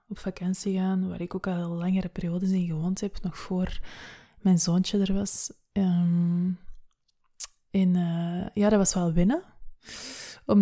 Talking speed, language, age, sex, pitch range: 155 wpm, Dutch, 20-39, female, 180-205 Hz